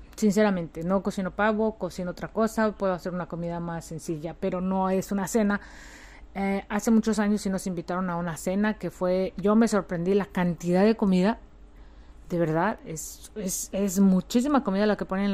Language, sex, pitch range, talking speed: Spanish, female, 170-200 Hz, 185 wpm